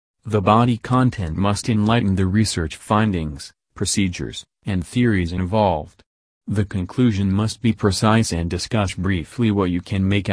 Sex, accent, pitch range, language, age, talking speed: male, American, 90-110 Hz, English, 40-59, 140 wpm